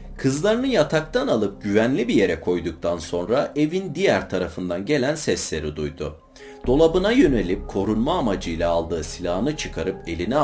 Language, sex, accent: Turkish, male, native